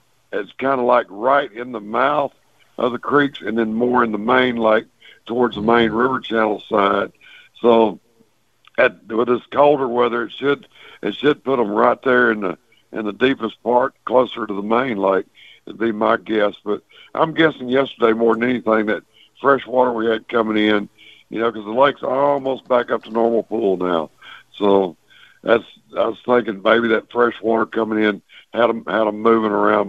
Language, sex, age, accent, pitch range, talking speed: English, male, 60-79, American, 110-125 Hz, 195 wpm